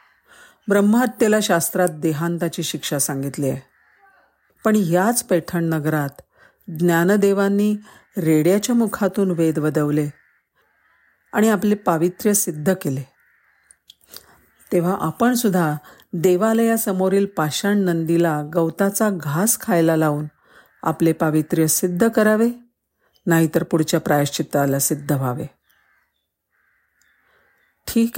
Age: 50-69